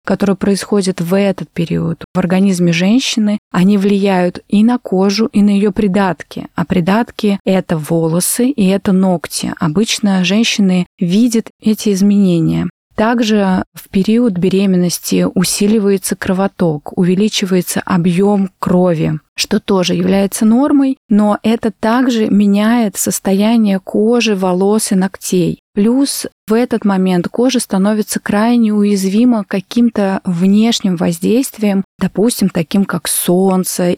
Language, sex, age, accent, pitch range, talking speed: Russian, female, 20-39, native, 185-220 Hz, 115 wpm